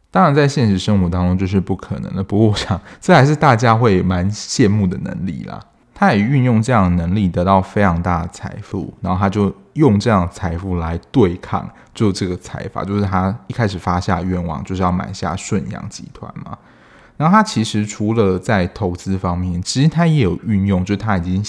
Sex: male